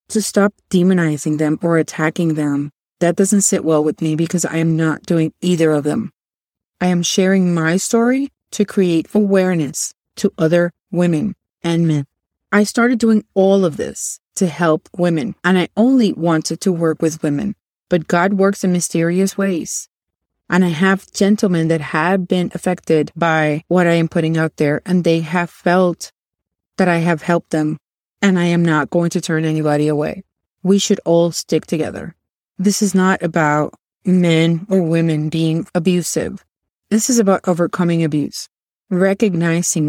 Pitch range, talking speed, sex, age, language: 165-200 Hz, 165 wpm, female, 30-49, English